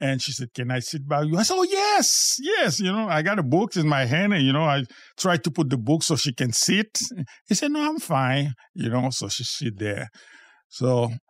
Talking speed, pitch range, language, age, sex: 250 wpm, 120-195 Hz, English, 50-69, male